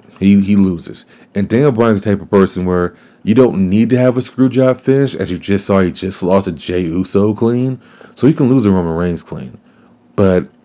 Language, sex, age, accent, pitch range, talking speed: English, male, 30-49, American, 95-135 Hz, 220 wpm